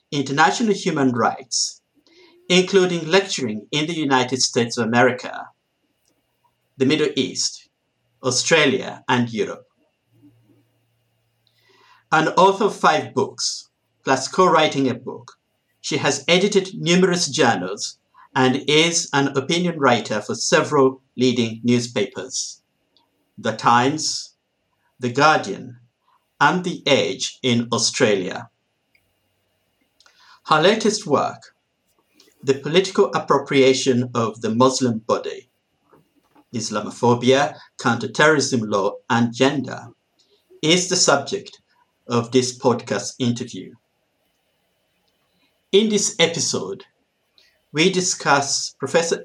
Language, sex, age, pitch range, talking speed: English, male, 50-69, 125-175 Hz, 95 wpm